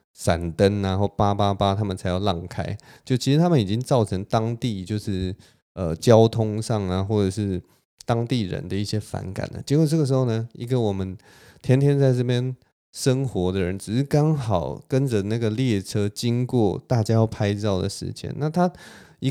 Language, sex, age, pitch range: Chinese, male, 20-39, 100-140 Hz